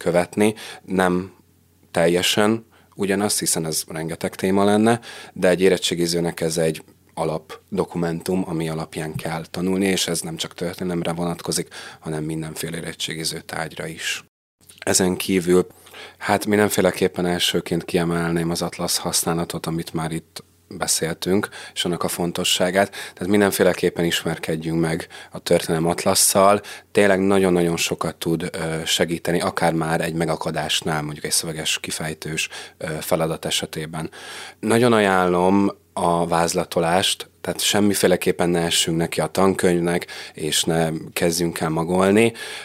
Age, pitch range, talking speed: 30-49, 85-95 Hz, 115 wpm